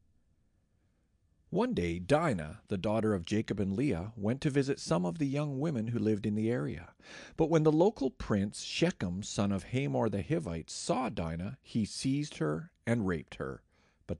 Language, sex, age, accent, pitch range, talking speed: English, male, 40-59, American, 100-145 Hz, 180 wpm